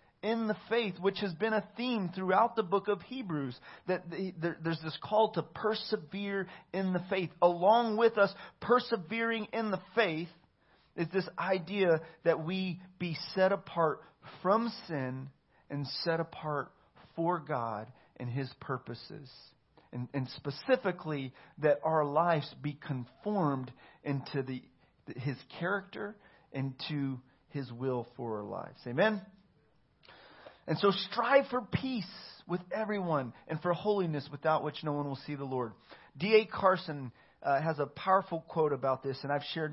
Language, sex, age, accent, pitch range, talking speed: English, male, 40-59, American, 140-195 Hz, 150 wpm